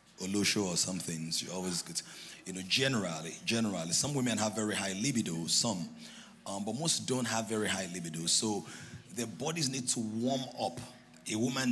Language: English